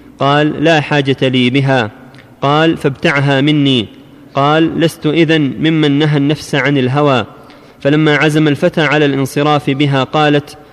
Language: Arabic